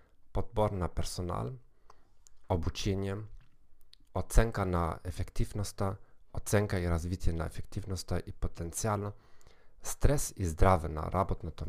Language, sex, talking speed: Bulgarian, male, 100 wpm